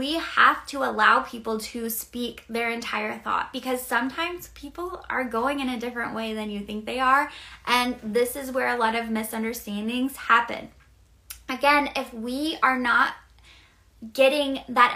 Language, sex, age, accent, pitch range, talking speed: English, female, 20-39, American, 235-280 Hz, 160 wpm